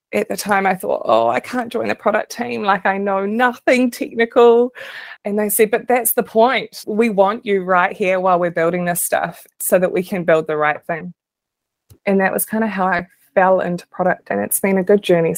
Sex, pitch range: female, 175-225 Hz